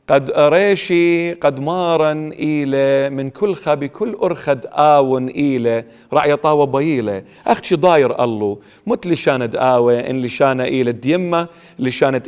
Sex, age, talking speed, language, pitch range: male, 40-59, 115 wpm, English, 125-160 Hz